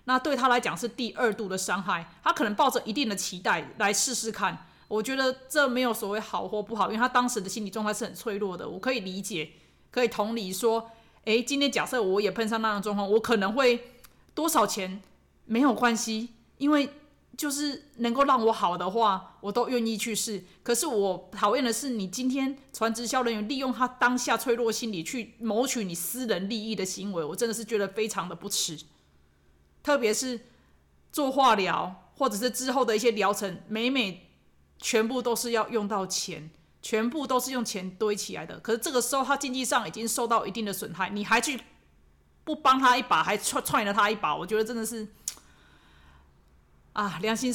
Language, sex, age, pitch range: Chinese, female, 30-49, 200-245 Hz